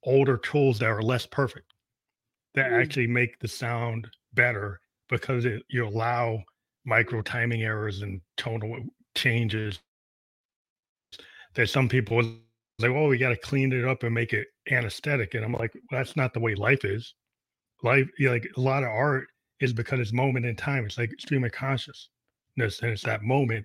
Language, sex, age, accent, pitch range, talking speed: English, male, 30-49, American, 115-130 Hz, 180 wpm